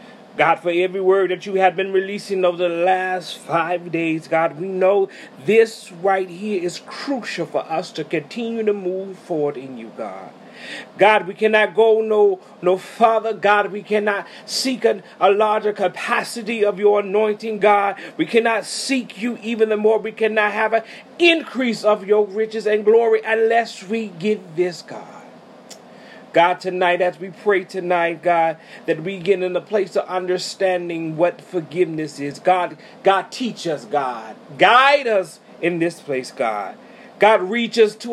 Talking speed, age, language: 165 wpm, 40-59, English